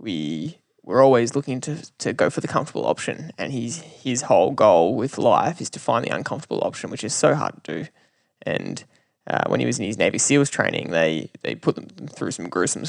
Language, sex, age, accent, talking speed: English, male, 10-29, Australian, 215 wpm